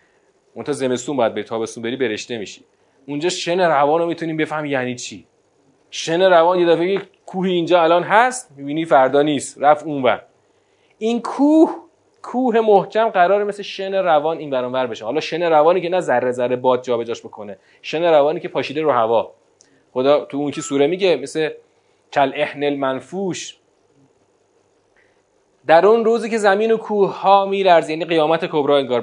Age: 30-49